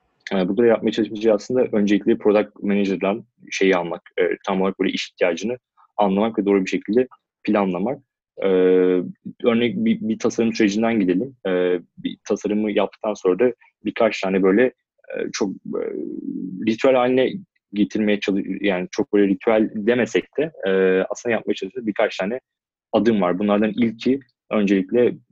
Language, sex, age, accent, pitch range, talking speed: Turkish, male, 30-49, native, 95-115 Hz, 150 wpm